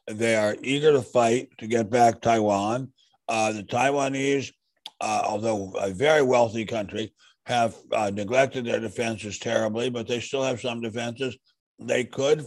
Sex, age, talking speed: male, 60-79, 155 wpm